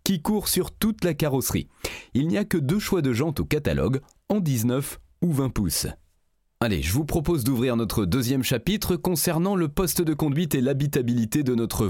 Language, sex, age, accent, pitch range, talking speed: French, male, 30-49, French, 105-170 Hz, 190 wpm